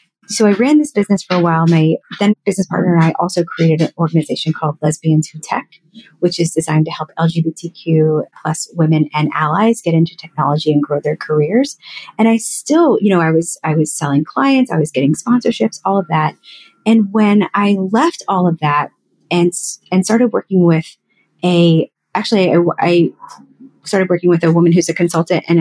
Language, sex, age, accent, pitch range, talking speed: English, female, 30-49, American, 160-205 Hz, 190 wpm